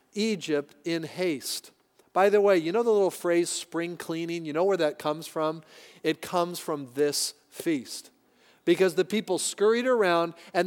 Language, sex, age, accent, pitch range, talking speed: English, male, 40-59, American, 155-200 Hz, 170 wpm